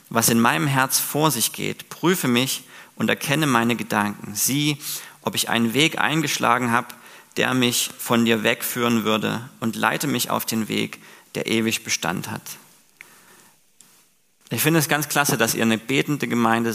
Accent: German